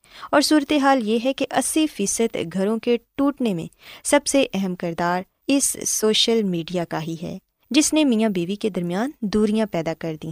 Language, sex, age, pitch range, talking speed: Urdu, female, 20-39, 180-255 Hz, 180 wpm